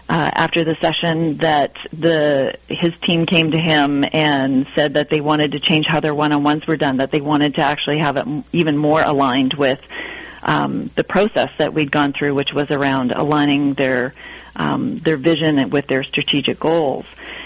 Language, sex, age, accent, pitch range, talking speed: English, female, 40-59, American, 145-160 Hz, 185 wpm